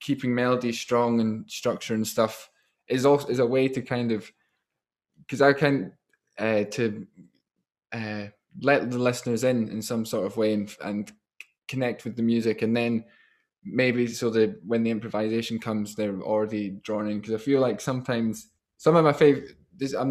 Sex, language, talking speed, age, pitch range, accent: male, English, 185 wpm, 10-29, 110-125 Hz, British